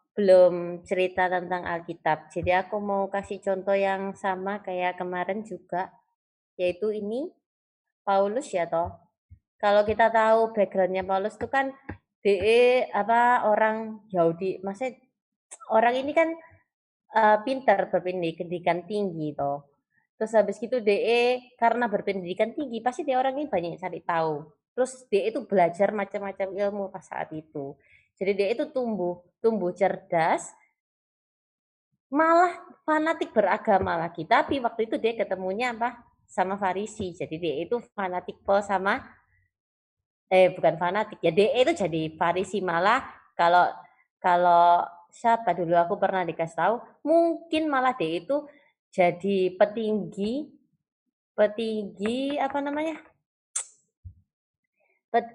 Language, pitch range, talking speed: Indonesian, 180-240 Hz, 125 wpm